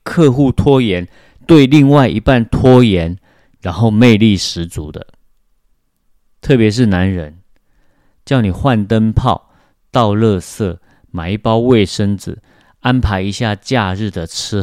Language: Chinese